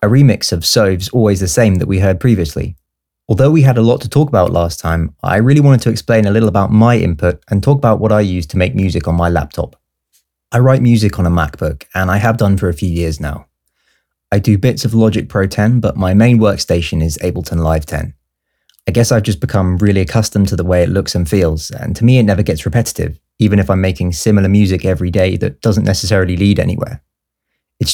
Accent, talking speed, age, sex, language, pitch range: British, 230 wpm, 20-39, male, English, 85-110 Hz